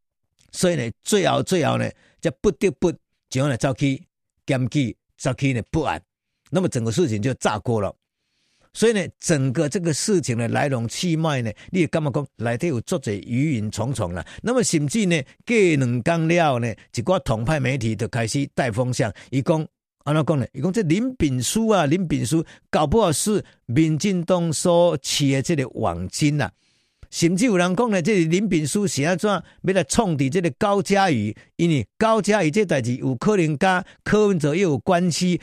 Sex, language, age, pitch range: male, Chinese, 50-69, 125-180 Hz